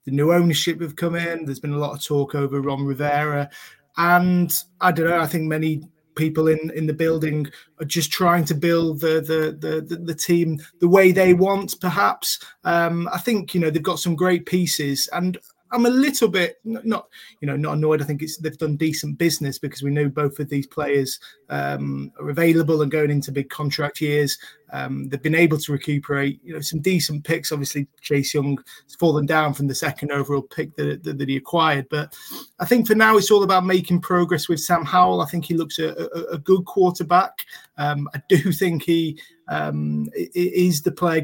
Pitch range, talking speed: 145-175 Hz, 210 wpm